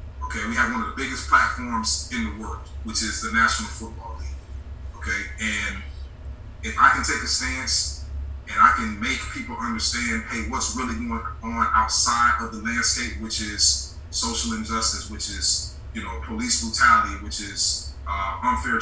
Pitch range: 70-85 Hz